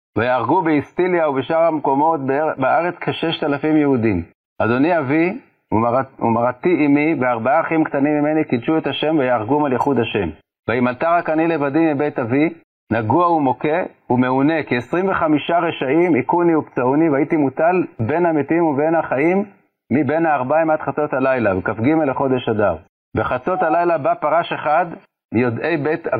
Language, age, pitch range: Hebrew, 40-59, 130-165 Hz